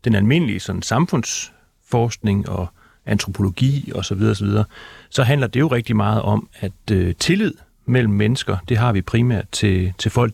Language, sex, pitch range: Danish, male, 95-120 Hz